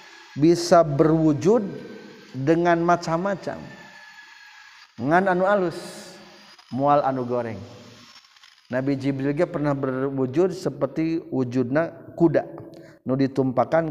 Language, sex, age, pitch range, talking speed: Indonesian, male, 50-69, 120-145 Hz, 85 wpm